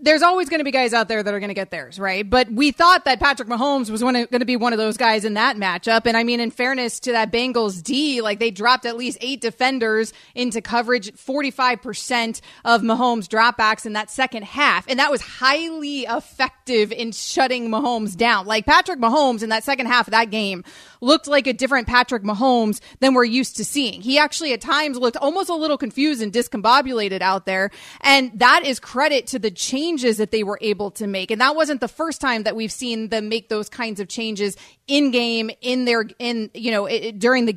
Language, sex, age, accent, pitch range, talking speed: English, female, 30-49, American, 220-260 Hz, 225 wpm